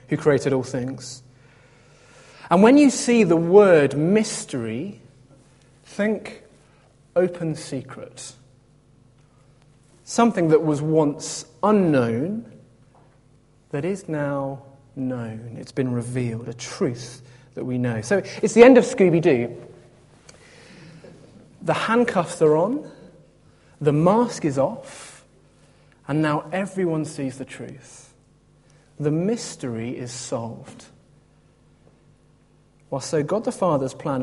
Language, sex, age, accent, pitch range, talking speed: English, male, 30-49, British, 130-170 Hz, 105 wpm